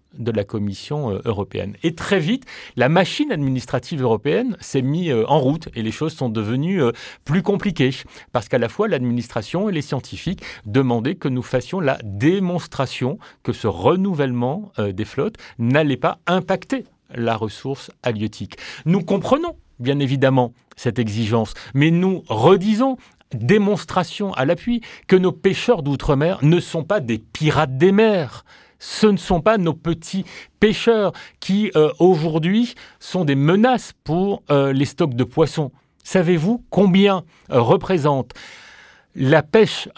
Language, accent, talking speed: French, French, 140 wpm